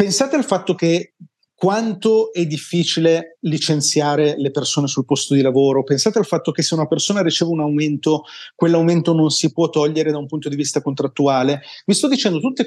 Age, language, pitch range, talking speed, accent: 30-49, Italian, 140-185 Hz, 185 wpm, native